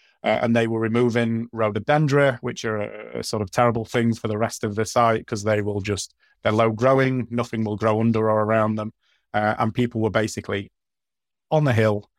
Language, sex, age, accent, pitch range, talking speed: English, male, 30-49, British, 105-120 Hz, 205 wpm